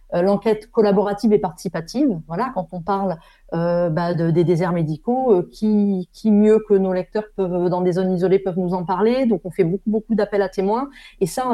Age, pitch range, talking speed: 30-49, 185-230 Hz, 220 wpm